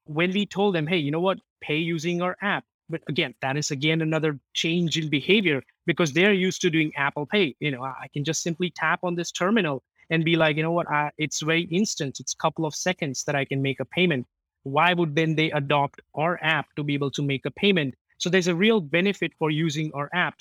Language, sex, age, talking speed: English, male, 20-39, 240 wpm